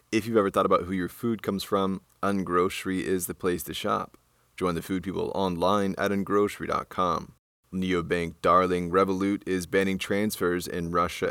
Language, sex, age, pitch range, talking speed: English, male, 20-39, 85-95 Hz, 165 wpm